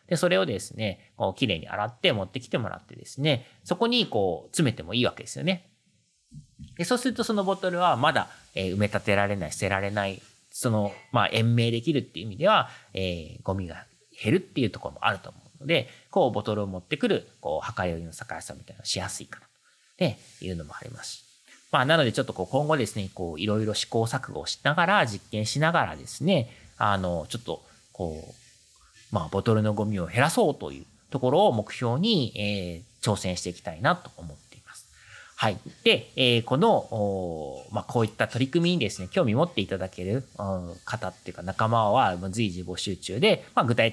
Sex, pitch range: male, 95-125 Hz